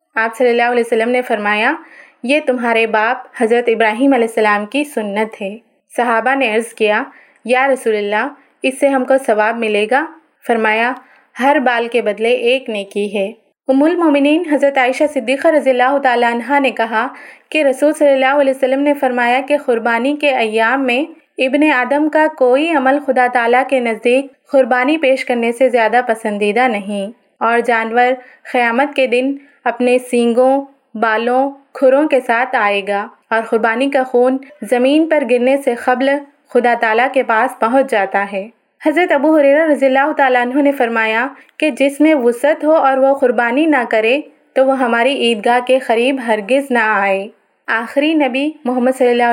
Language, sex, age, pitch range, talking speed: Urdu, female, 30-49, 235-280 Hz, 175 wpm